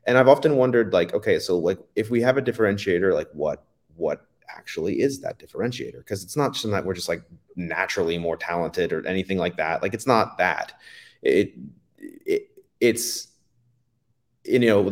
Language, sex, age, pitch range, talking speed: English, male, 30-49, 95-120 Hz, 175 wpm